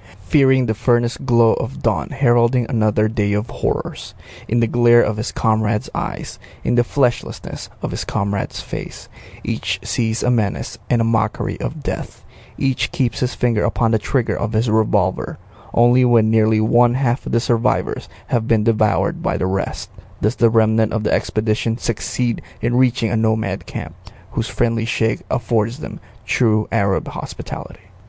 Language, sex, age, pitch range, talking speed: English, male, 20-39, 105-120 Hz, 165 wpm